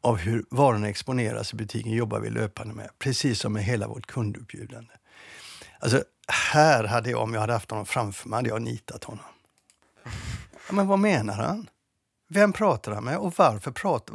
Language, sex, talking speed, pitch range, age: Swedish, male, 180 wpm, 110-155 Hz, 60-79